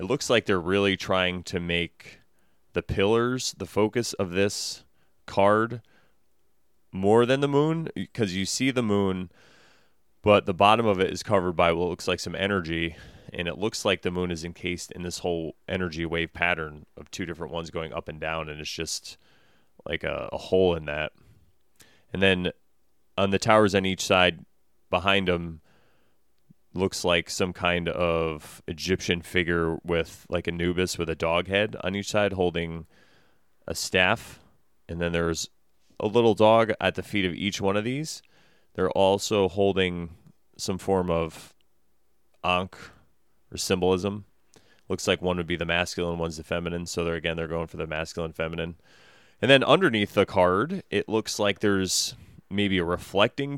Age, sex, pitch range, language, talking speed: 30-49, male, 85-100 Hz, English, 170 wpm